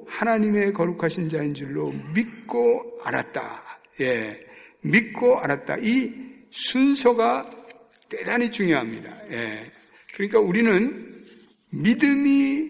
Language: Korean